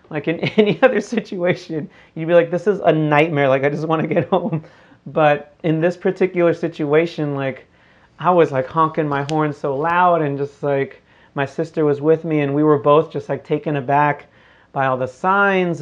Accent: American